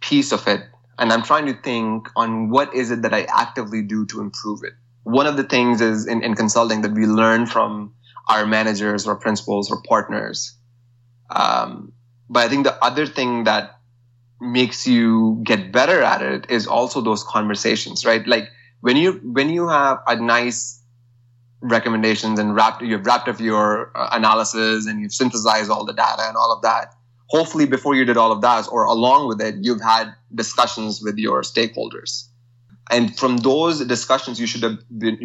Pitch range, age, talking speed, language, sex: 110-120 Hz, 20-39, 185 wpm, English, male